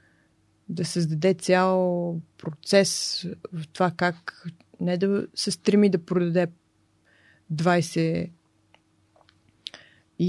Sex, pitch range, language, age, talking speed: female, 160-180 Hz, Bulgarian, 20-39, 75 wpm